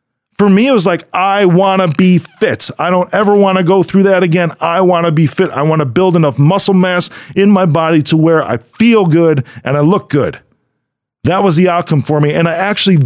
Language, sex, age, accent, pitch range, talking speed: English, male, 40-59, American, 135-190 Hz, 240 wpm